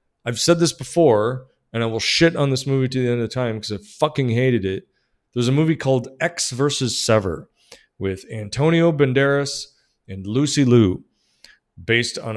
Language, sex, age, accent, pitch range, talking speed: English, male, 40-59, American, 110-145 Hz, 175 wpm